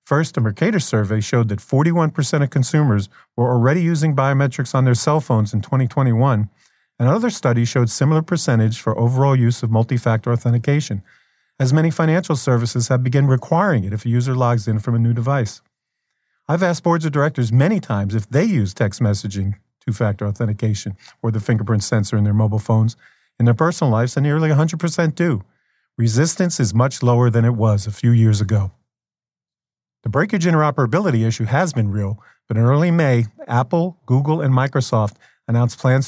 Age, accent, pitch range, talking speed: 40-59, American, 115-145 Hz, 175 wpm